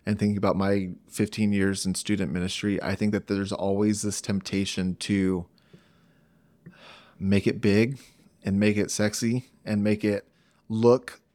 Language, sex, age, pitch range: English, male, 30-49, 100-115 Hz